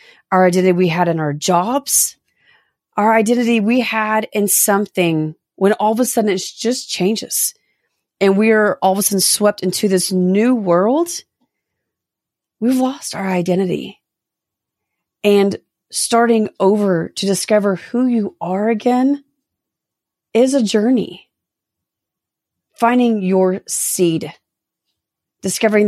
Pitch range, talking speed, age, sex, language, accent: 185-235 Hz, 125 wpm, 30-49, female, English, American